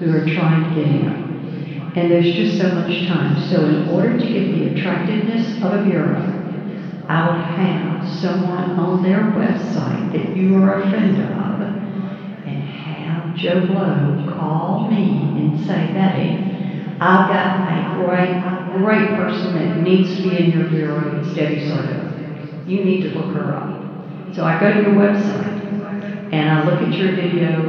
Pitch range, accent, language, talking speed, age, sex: 160-190 Hz, American, English, 175 wpm, 60-79, female